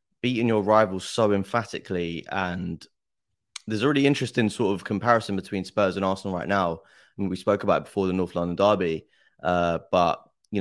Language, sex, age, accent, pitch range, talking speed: English, male, 20-39, British, 90-105 Hz, 175 wpm